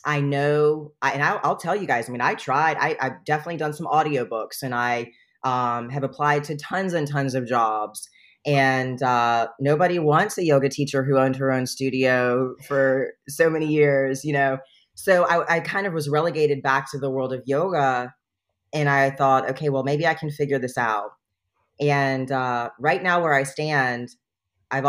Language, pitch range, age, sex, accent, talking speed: English, 120-145 Hz, 30-49, female, American, 190 wpm